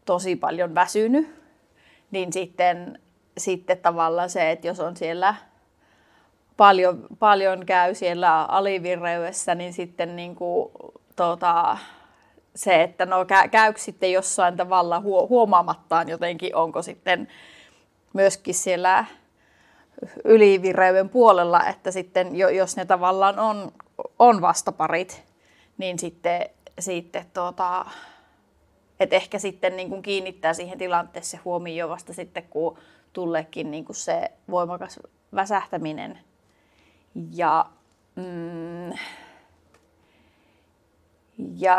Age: 30-49